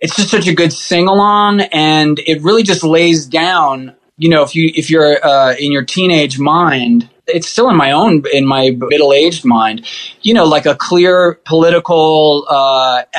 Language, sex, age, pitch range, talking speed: English, male, 20-39, 135-170 Hz, 180 wpm